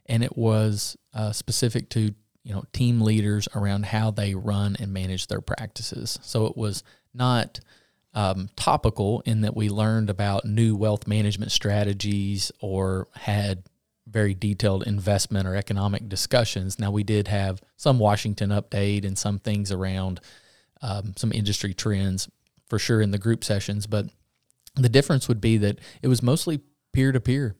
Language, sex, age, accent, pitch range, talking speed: English, male, 30-49, American, 100-120 Hz, 155 wpm